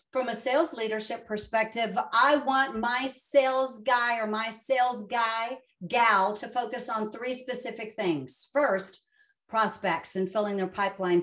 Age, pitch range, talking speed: 50-69, 200-255 Hz, 145 wpm